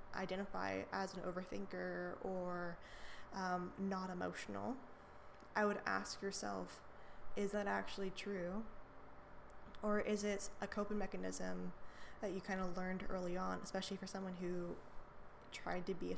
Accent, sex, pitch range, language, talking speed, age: American, female, 170-195 Hz, English, 135 wpm, 20-39